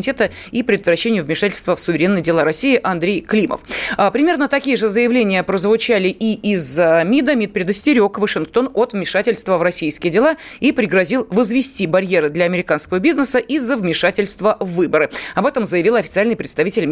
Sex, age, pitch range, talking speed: female, 20-39, 180-245 Hz, 145 wpm